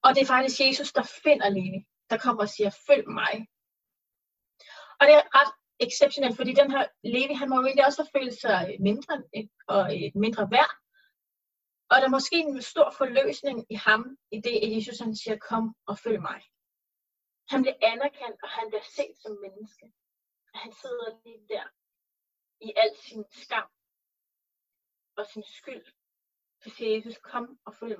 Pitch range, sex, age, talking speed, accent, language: 215-280 Hz, female, 30-49, 170 wpm, native, Danish